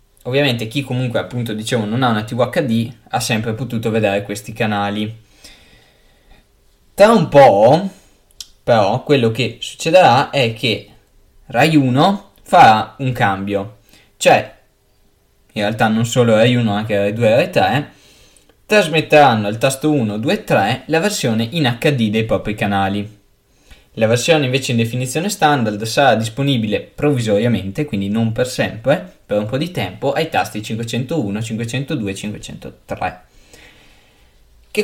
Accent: native